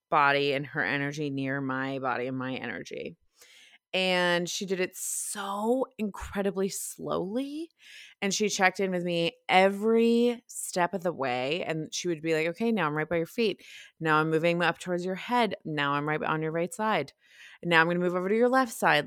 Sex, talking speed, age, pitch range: female, 200 wpm, 20-39, 145-200 Hz